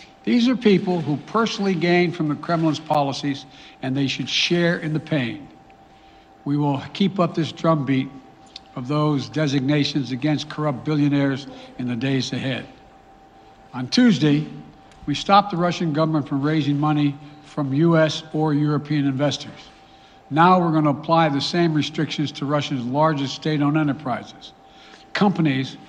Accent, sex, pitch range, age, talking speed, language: American, male, 140-165 Hz, 60-79, 145 wpm, English